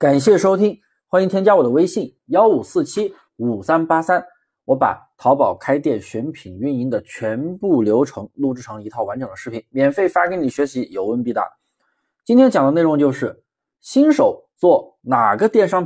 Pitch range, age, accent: 120-195 Hz, 20-39, native